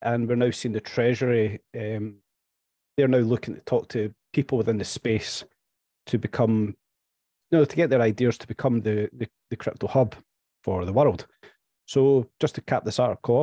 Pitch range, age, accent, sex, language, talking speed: 105-130 Hz, 30-49, British, male, English, 185 wpm